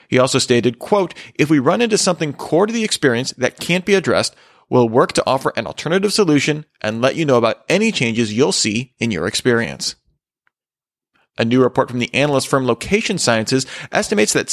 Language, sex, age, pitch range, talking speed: English, male, 30-49, 115-150 Hz, 195 wpm